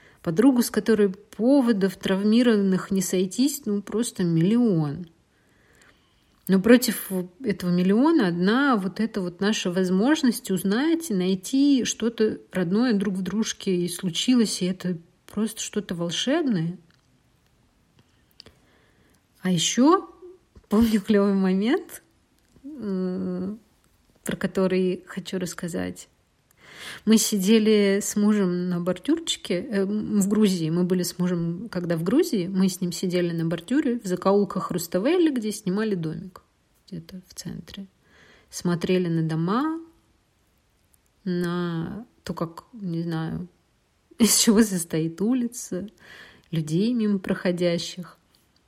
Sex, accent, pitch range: female, native, 180-225 Hz